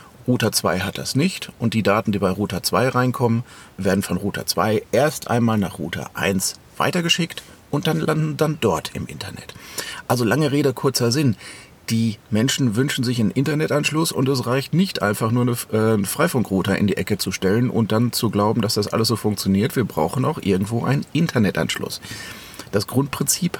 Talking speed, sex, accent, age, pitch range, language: 185 wpm, male, German, 40-59, 100-130 Hz, German